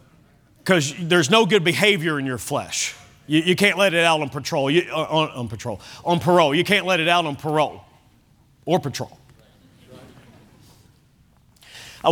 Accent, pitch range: American, 130-205 Hz